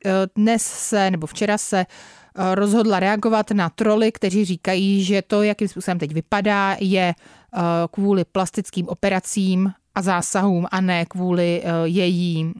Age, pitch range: 30-49, 175-205 Hz